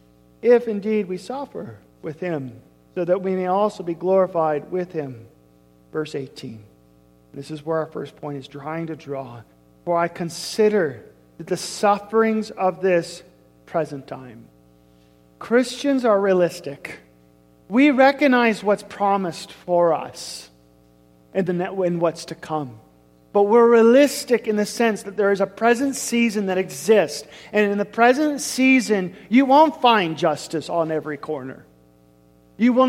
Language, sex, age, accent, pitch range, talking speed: English, male, 40-59, American, 140-230 Hz, 140 wpm